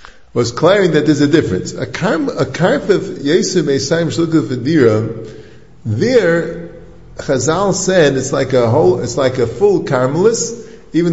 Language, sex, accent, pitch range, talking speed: English, male, American, 125-170 Hz, 145 wpm